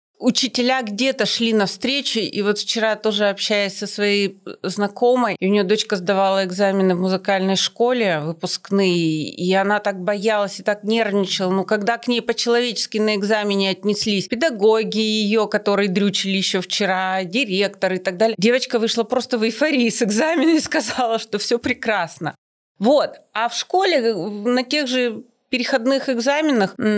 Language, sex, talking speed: Russian, female, 150 wpm